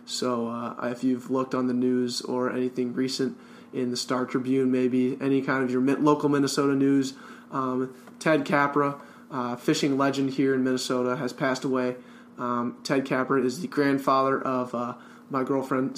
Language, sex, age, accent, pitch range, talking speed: English, male, 20-39, American, 125-140 Hz, 170 wpm